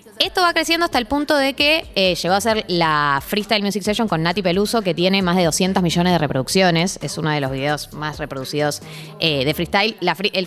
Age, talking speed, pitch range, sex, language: 20-39, 220 wpm, 170-235 Hz, female, Spanish